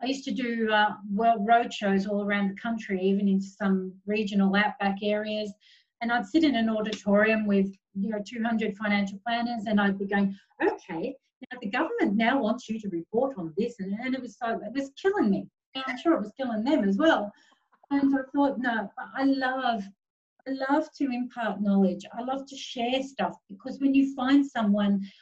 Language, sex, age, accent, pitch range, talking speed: English, female, 40-59, Australian, 195-260 Hz, 195 wpm